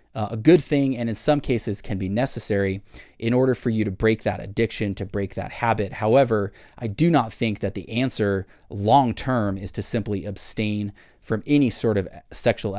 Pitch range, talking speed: 100-120 Hz, 195 wpm